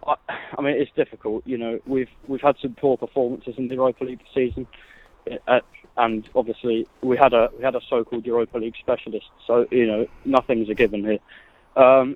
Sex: male